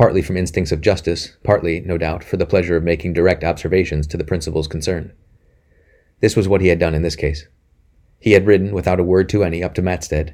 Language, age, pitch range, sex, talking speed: English, 30-49, 80-95 Hz, male, 225 wpm